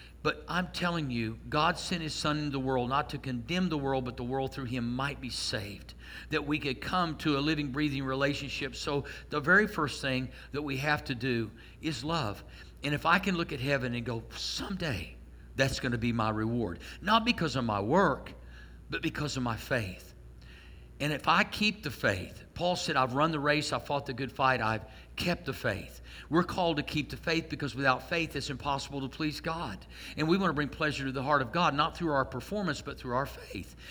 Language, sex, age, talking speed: English, male, 50-69, 220 wpm